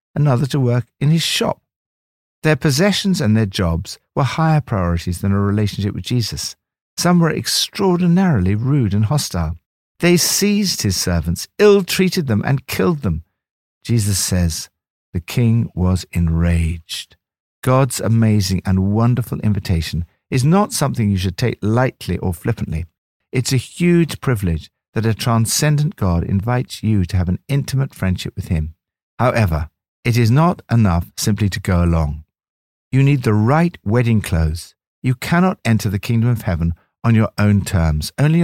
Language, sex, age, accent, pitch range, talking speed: English, male, 60-79, British, 90-125 Hz, 155 wpm